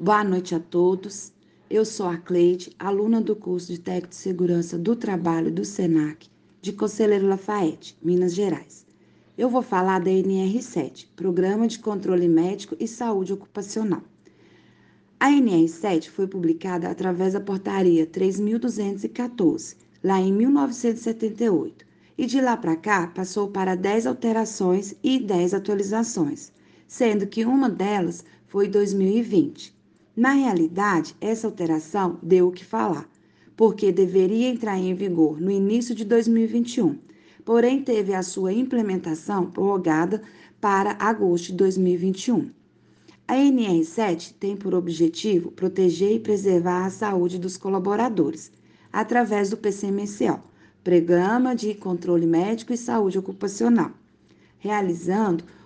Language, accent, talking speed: Portuguese, Brazilian, 125 wpm